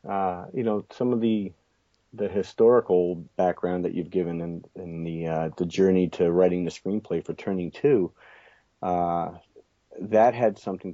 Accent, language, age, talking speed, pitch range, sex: American, English, 40-59, 160 wpm, 85-100 Hz, male